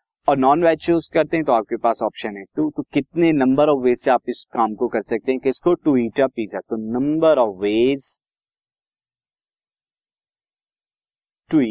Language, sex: Hindi, male